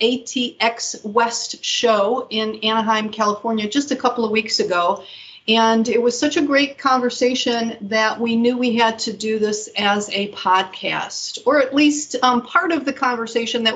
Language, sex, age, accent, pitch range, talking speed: English, female, 40-59, American, 215-255 Hz, 170 wpm